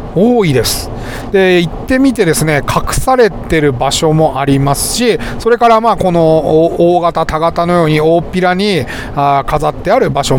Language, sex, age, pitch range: Japanese, male, 40-59, 150-230 Hz